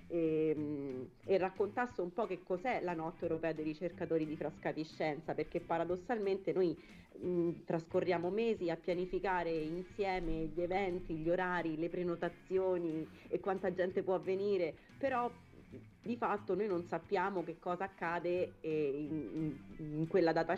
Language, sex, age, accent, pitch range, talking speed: Italian, female, 30-49, native, 160-185 Hz, 145 wpm